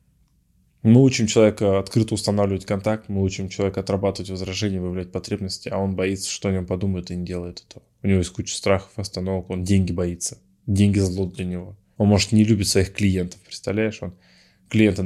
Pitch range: 90-105 Hz